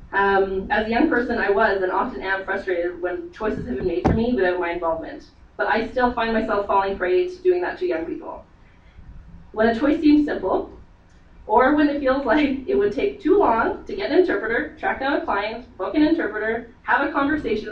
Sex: female